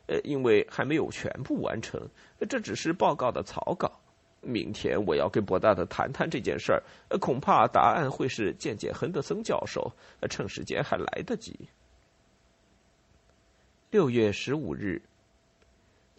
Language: Chinese